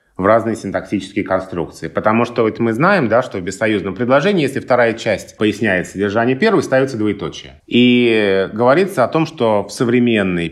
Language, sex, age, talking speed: Russian, male, 20-39, 165 wpm